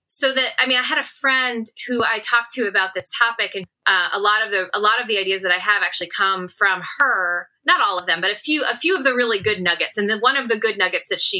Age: 20-39